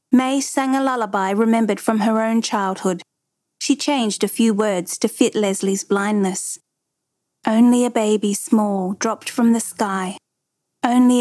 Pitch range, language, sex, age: 195-235 Hz, English, female, 40-59